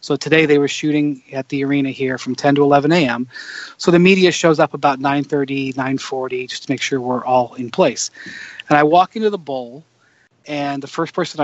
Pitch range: 135-160 Hz